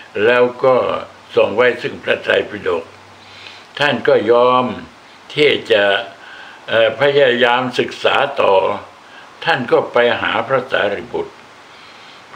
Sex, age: male, 60-79